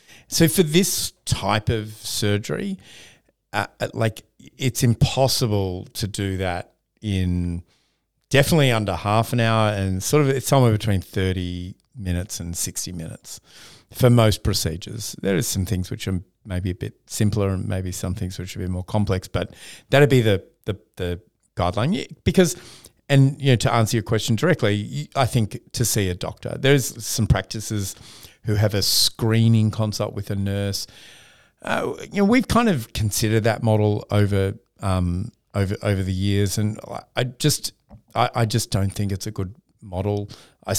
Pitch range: 95-120 Hz